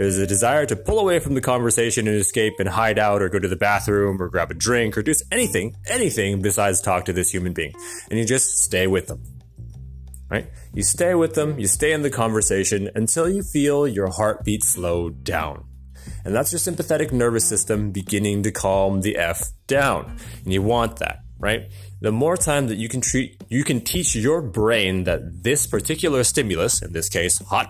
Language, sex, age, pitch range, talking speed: English, male, 30-49, 95-120 Hz, 200 wpm